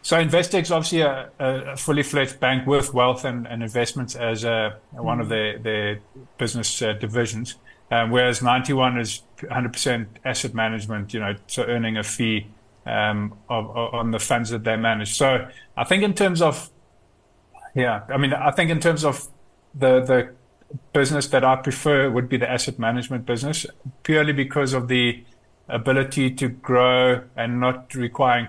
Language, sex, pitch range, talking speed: English, male, 115-135 Hz, 170 wpm